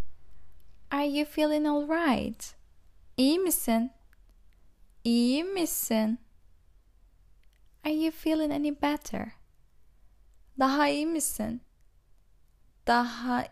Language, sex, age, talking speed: Turkish, female, 10-29, 80 wpm